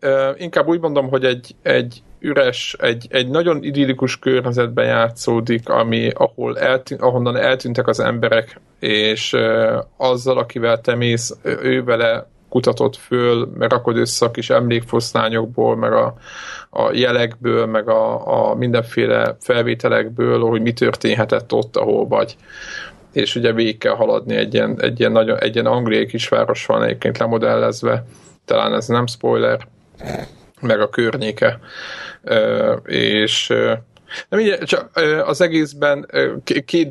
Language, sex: Hungarian, male